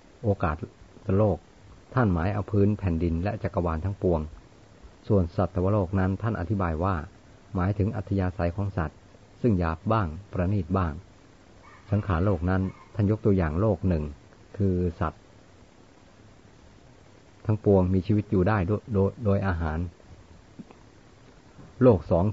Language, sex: Thai, male